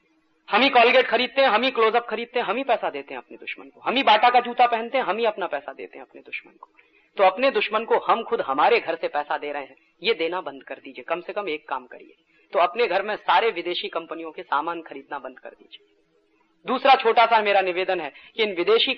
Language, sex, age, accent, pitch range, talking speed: Hindi, female, 30-49, native, 160-225 Hz, 255 wpm